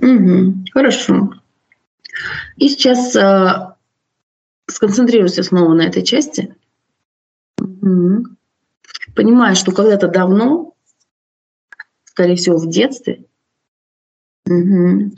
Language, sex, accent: Russian, female, native